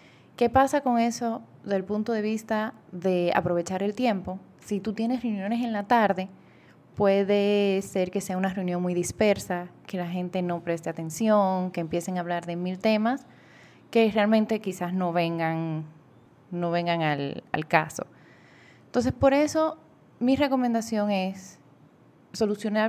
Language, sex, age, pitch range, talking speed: Spanish, female, 10-29, 175-225 Hz, 150 wpm